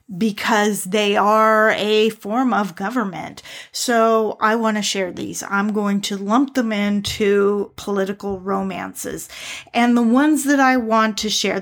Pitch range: 195-225 Hz